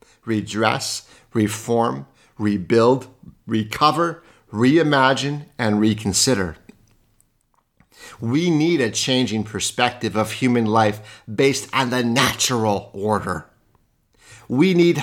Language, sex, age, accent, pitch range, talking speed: English, male, 50-69, American, 110-155 Hz, 90 wpm